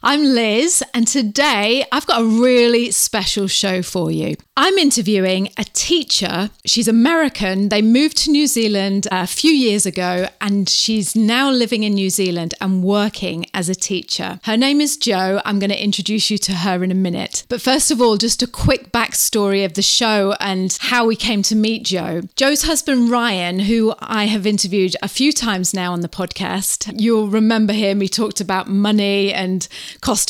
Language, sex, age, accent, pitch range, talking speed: English, female, 30-49, British, 195-240 Hz, 185 wpm